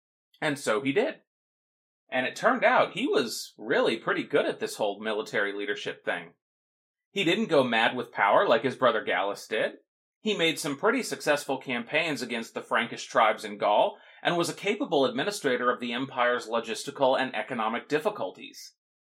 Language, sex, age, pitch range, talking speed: English, male, 30-49, 125-195 Hz, 170 wpm